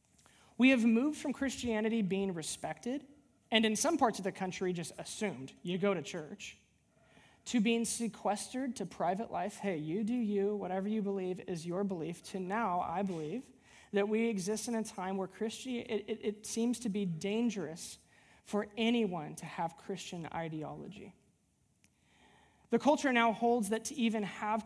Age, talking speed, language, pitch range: 20-39, 165 wpm, English, 185-230 Hz